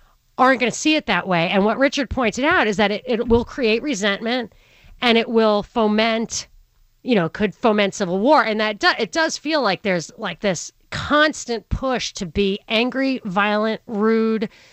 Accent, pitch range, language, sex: American, 200-245 Hz, English, female